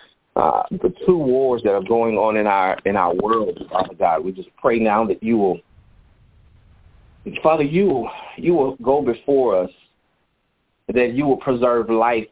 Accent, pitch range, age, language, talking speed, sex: American, 105-135 Hz, 30-49, English, 170 wpm, male